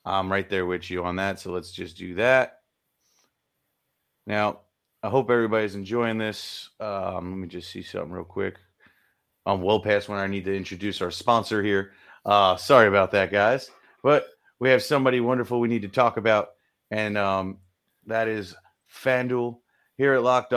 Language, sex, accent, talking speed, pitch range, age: English, male, American, 175 wpm, 100-120 Hz, 30-49